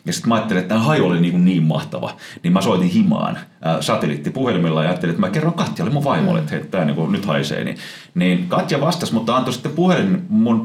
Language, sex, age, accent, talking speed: Finnish, male, 30-49, native, 225 wpm